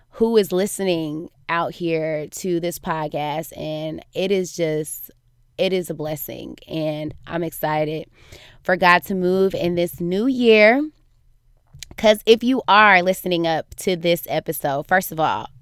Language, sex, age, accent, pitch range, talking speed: English, female, 20-39, American, 165-200 Hz, 150 wpm